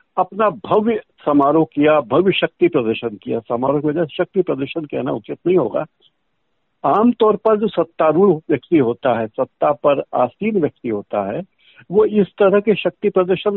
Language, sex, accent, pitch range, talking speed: Hindi, male, native, 140-190 Hz, 85 wpm